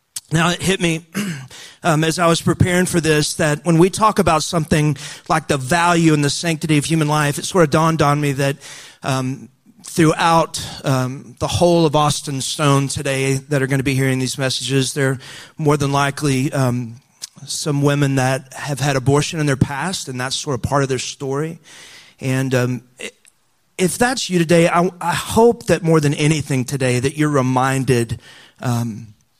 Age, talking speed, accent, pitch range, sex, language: 40-59, 185 wpm, American, 135-170 Hz, male, English